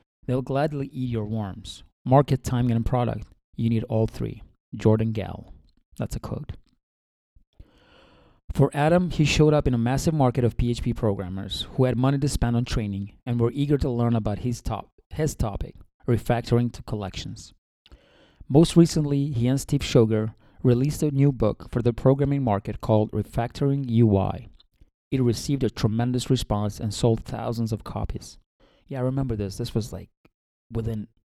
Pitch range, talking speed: 105-130 Hz, 165 wpm